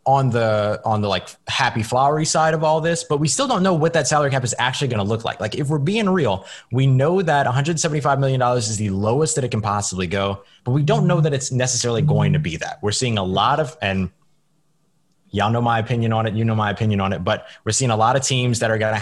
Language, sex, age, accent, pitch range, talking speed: English, male, 20-39, American, 100-140 Hz, 265 wpm